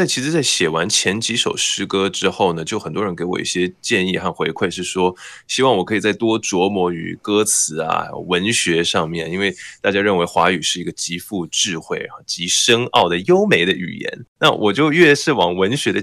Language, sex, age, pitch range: Chinese, male, 20-39, 90-115 Hz